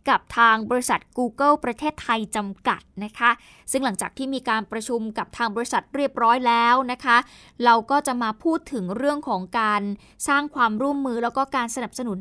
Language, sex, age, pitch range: Thai, female, 20-39, 220-280 Hz